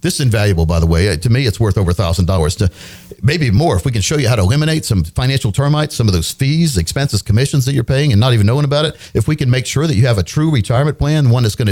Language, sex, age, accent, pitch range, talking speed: English, male, 50-69, American, 100-135 Hz, 280 wpm